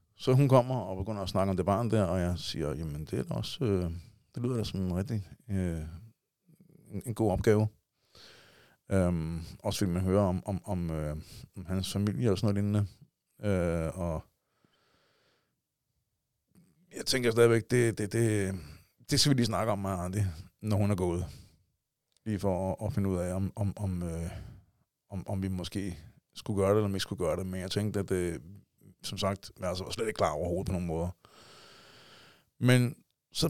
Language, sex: Danish, male